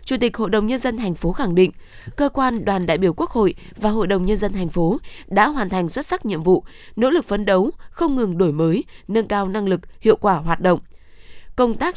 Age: 20-39